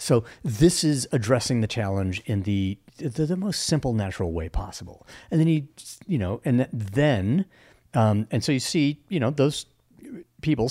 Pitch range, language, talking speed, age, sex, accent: 95-135 Hz, English, 180 wpm, 40-59, male, American